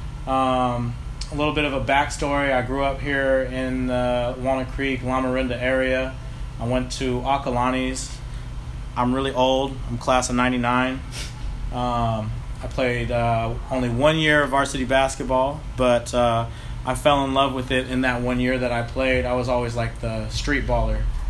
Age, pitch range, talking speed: 20-39, 115-130 Hz, 170 wpm